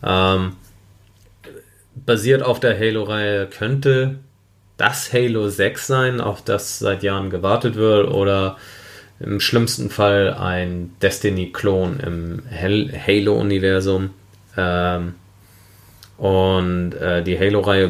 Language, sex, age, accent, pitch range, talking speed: German, male, 30-49, German, 95-105 Hz, 95 wpm